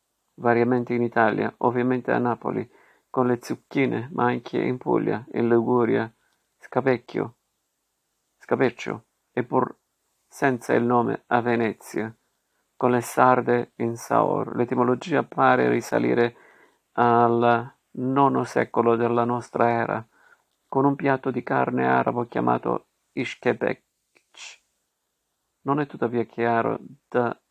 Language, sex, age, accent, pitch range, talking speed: Italian, male, 50-69, native, 115-130 Hz, 110 wpm